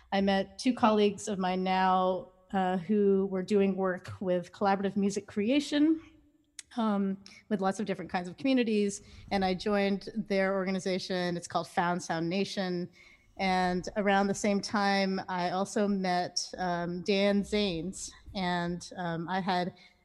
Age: 30-49